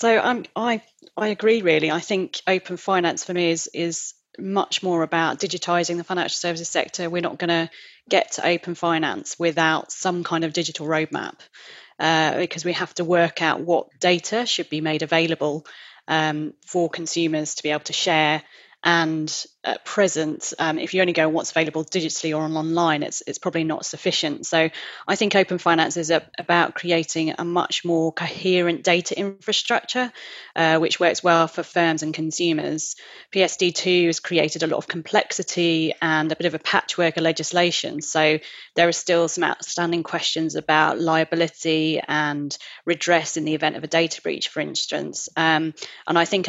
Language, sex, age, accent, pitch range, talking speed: English, female, 30-49, British, 160-180 Hz, 180 wpm